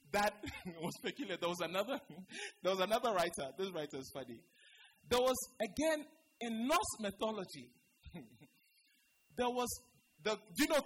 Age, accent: 20-39, Nigerian